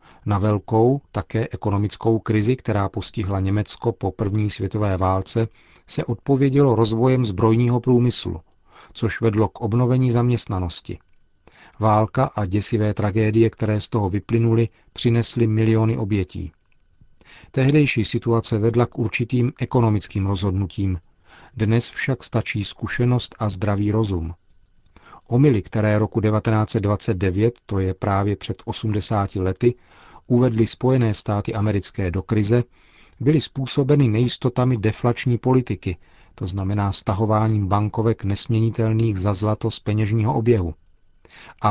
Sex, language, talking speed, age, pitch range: male, Czech, 115 wpm, 40-59, 100-120 Hz